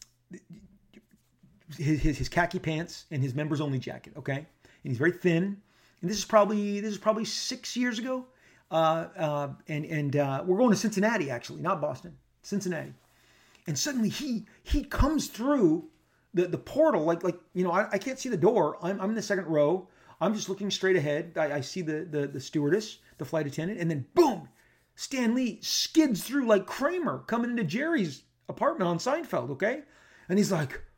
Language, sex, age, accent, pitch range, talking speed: English, male, 30-49, American, 145-215 Hz, 190 wpm